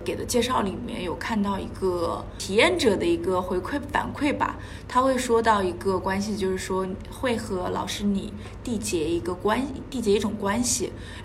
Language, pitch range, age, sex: Chinese, 195-230 Hz, 20-39, female